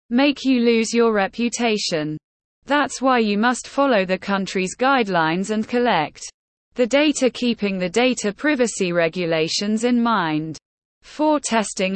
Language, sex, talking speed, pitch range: English, female, 130 wpm, 185-250 Hz